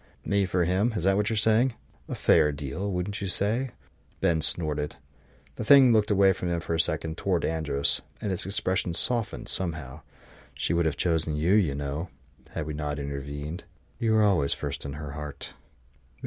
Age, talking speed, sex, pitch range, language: 40-59, 185 wpm, male, 75-95 Hz, English